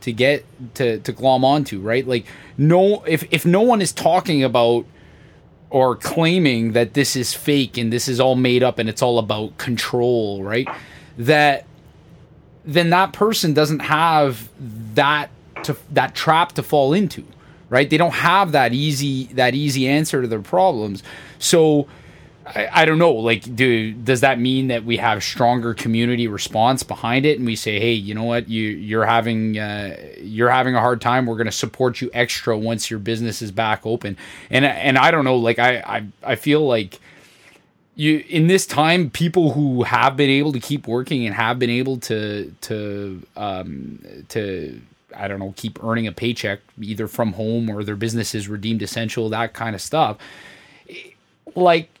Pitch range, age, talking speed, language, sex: 115-145 Hz, 20-39, 180 wpm, English, male